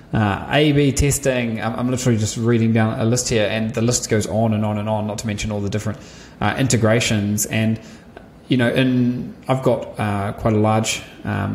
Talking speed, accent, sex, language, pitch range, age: 215 wpm, Australian, male, English, 105-120 Hz, 20-39